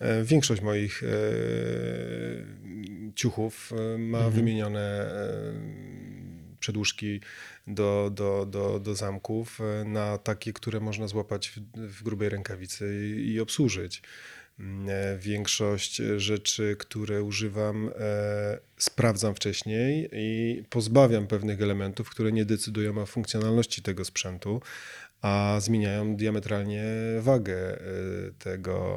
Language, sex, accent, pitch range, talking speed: Polish, male, native, 100-115 Hz, 85 wpm